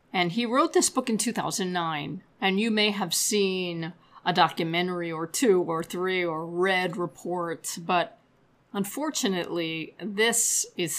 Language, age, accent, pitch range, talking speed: English, 40-59, American, 165-205 Hz, 135 wpm